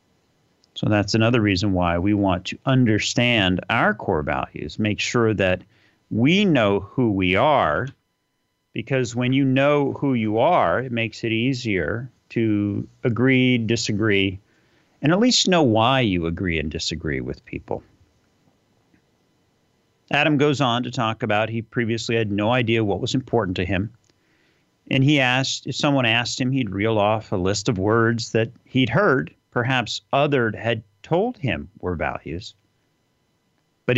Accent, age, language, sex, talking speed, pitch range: American, 40-59, English, male, 150 wpm, 100-130 Hz